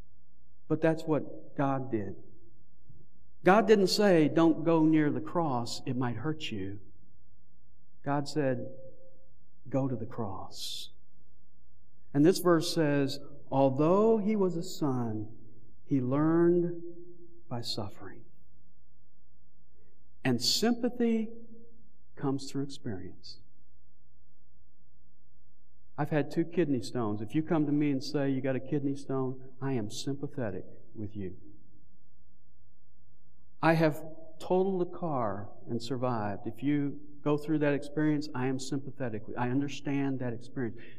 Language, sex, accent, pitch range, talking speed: English, male, American, 105-155 Hz, 120 wpm